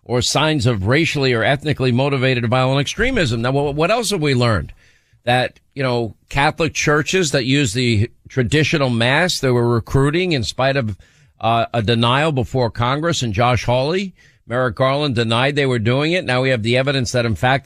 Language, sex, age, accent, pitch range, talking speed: English, male, 50-69, American, 120-155 Hz, 185 wpm